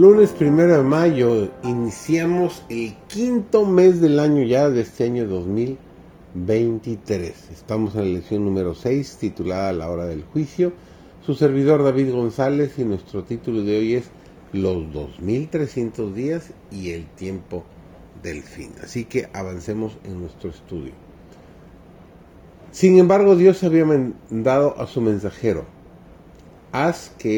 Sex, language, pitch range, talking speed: male, Spanish, 95-135 Hz, 130 wpm